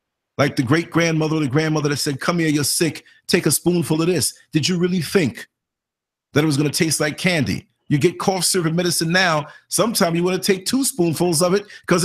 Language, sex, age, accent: English, male, 40-59, American